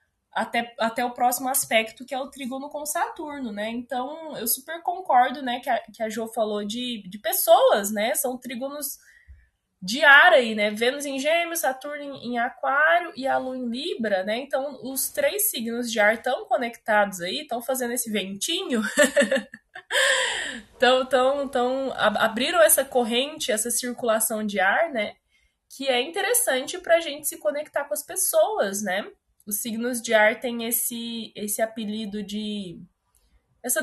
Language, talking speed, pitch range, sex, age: Portuguese, 165 wpm, 225-295 Hz, female, 20-39